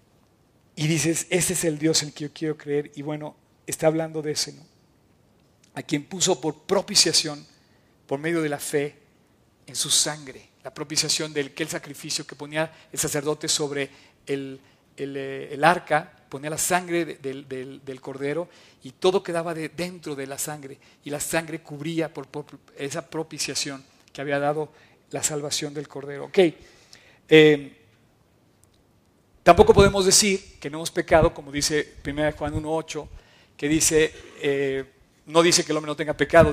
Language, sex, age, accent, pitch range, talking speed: Spanish, male, 50-69, Mexican, 145-180 Hz, 170 wpm